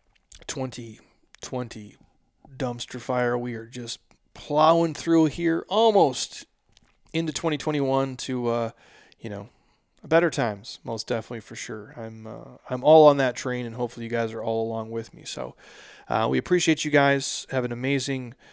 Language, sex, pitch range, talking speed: English, male, 120-145 Hz, 150 wpm